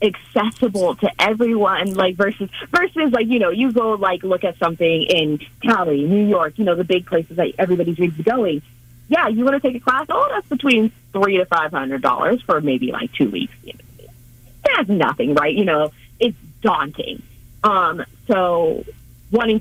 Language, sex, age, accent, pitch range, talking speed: English, female, 30-49, American, 150-210 Hz, 170 wpm